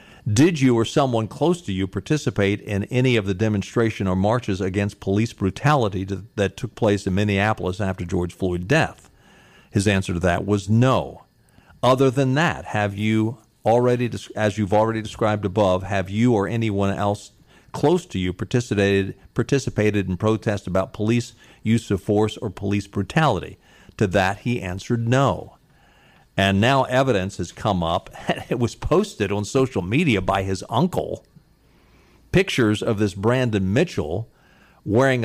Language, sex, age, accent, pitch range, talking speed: English, male, 50-69, American, 100-130 Hz, 155 wpm